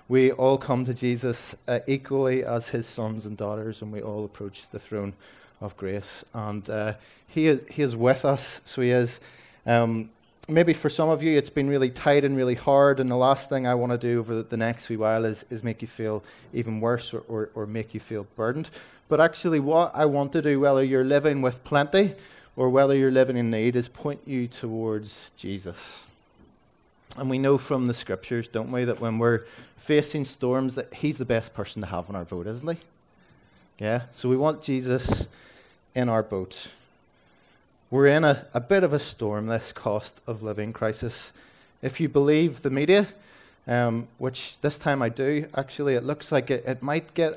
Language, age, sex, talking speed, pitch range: English, 30-49, male, 205 wpm, 110-140 Hz